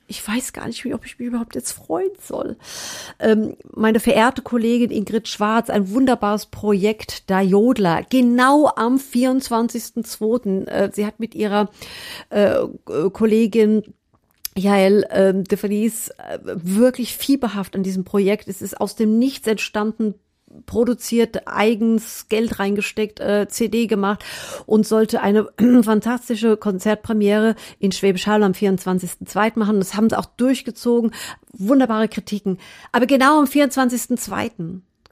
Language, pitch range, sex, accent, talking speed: German, 195-230 Hz, female, German, 125 wpm